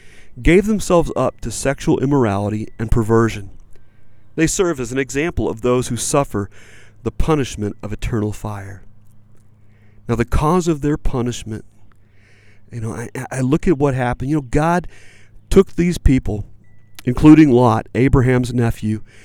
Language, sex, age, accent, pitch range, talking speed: English, male, 40-59, American, 105-140 Hz, 145 wpm